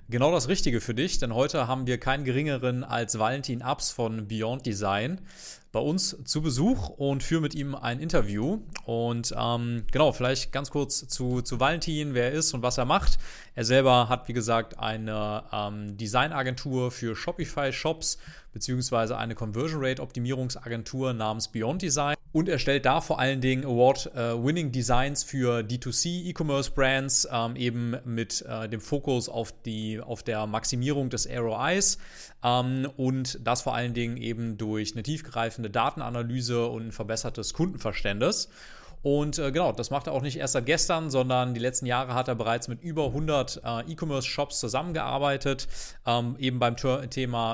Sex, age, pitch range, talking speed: male, 30-49, 115-140 Hz, 160 wpm